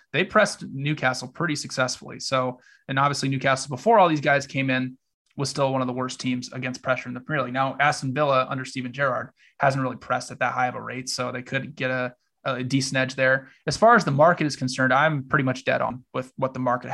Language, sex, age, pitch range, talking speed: English, male, 20-39, 130-145 Hz, 240 wpm